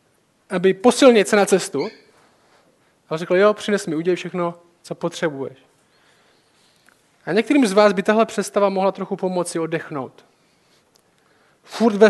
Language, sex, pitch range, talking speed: Czech, male, 170-210 Hz, 135 wpm